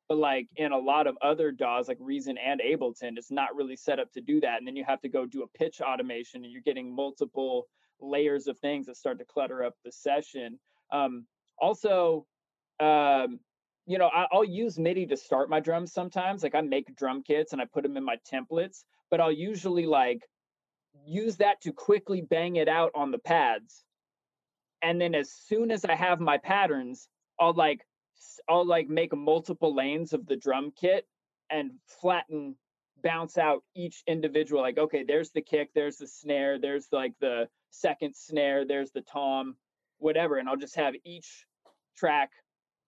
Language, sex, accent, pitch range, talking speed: English, male, American, 135-165 Hz, 185 wpm